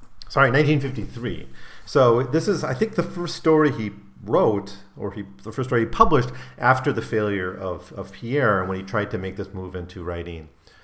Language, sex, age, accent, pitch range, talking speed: English, male, 40-59, American, 90-120 Hz, 190 wpm